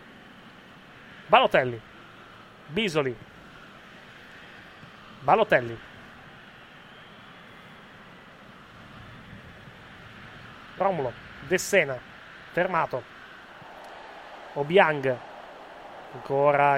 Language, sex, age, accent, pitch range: Italian, male, 30-49, native, 135-180 Hz